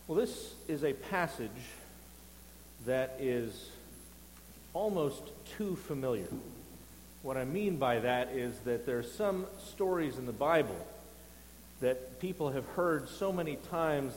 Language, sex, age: English, male, 40-59